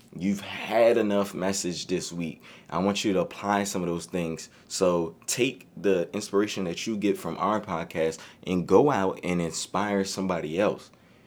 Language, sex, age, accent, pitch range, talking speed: English, male, 20-39, American, 90-105 Hz, 170 wpm